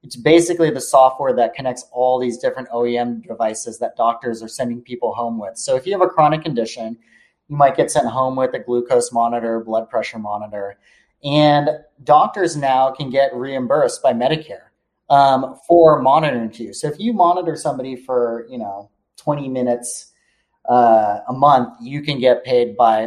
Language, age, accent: English, 30-49, American